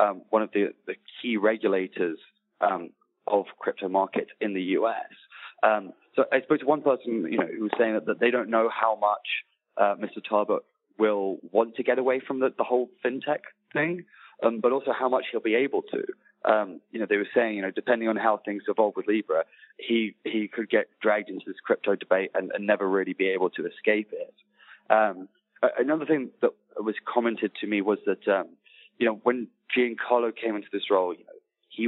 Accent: British